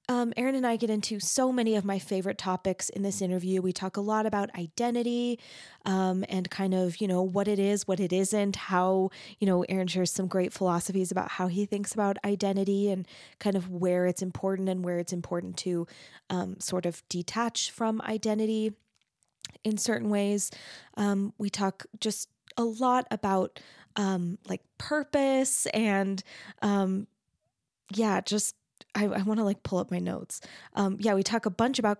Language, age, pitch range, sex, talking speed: English, 20-39, 190-215 Hz, female, 180 wpm